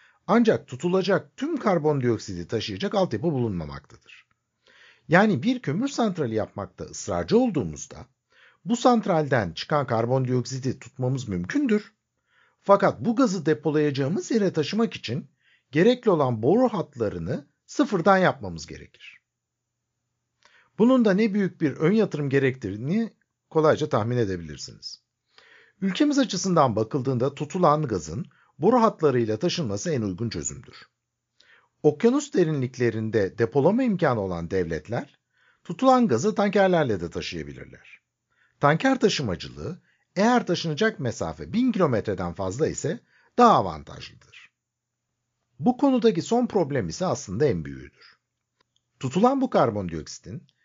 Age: 60-79